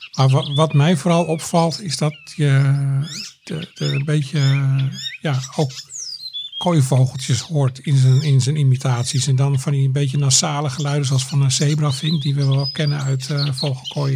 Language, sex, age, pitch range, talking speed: Dutch, male, 50-69, 130-150 Hz, 160 wpm